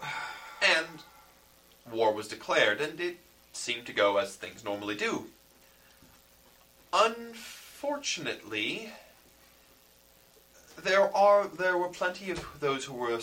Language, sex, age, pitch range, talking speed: English, male, 20-39, 90-140 Hz, 105 wpm